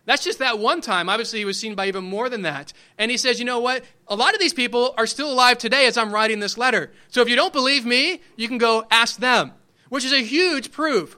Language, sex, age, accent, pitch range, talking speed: English, male, 30-49, American, 185-235 Hz, 270 wpm